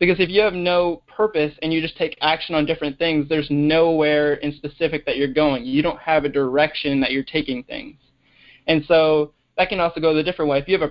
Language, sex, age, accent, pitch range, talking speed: English, male, 20-39, American, 145-170 Hz, 235 wpm